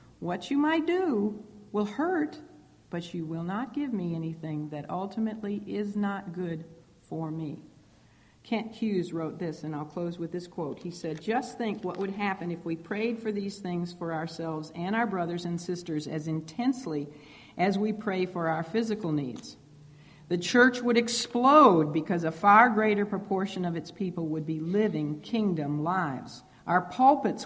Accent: American